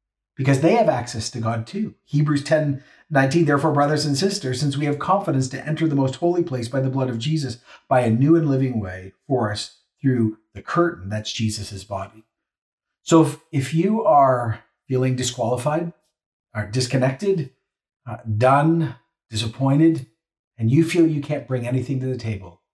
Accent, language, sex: American, English, male